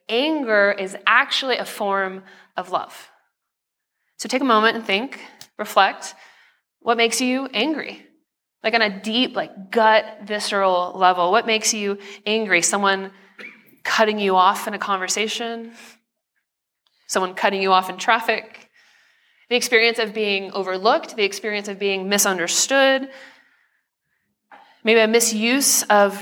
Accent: American